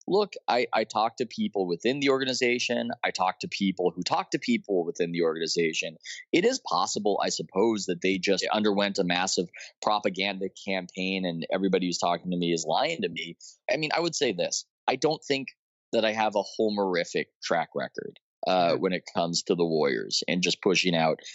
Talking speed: 195 wpm